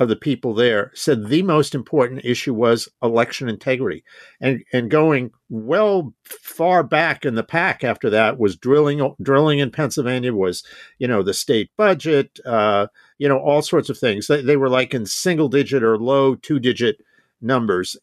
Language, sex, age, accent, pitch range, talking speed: English, male, 50-69, American, 115-145 Hz, 175 wpm